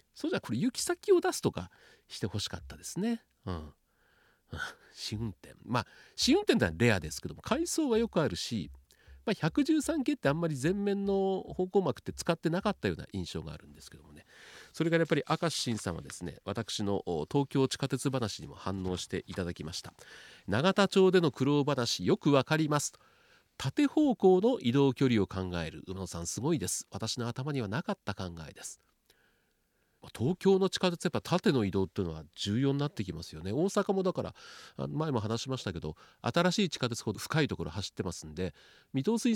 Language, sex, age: Japanese, male, 40-59